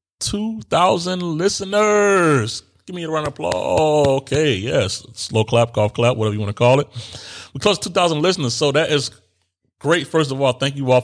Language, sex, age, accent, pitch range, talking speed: English, male, 30-49, American, 110-140 Hz, 185 wpm